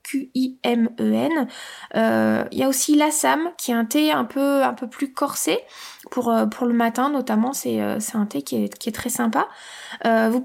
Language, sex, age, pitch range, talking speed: French, female, 20-39, 230-280 Hz, 200 wpm